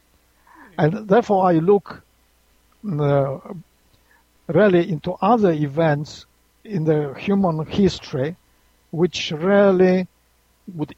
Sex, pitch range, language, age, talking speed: male, 145-185 Hz, English, 60-79, 85 wpm